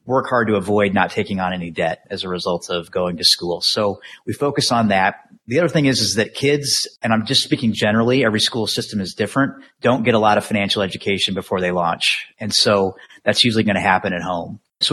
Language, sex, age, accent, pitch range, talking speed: English, male, 30-49, American, 95-110 Hz, 235 wpm